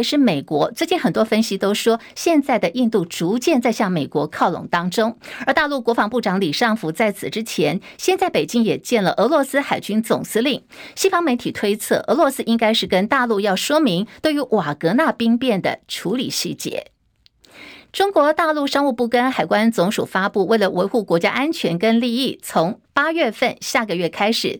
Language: Chinese